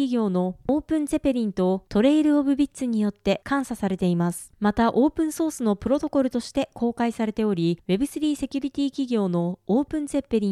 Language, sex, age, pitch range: Japanese, female, 20-39, 205-285 Hz